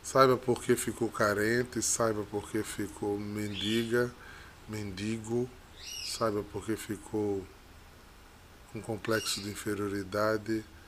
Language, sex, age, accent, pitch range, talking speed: Portuguese, male, 20-39, Brazilian, 100-135 Hz, 105 wpm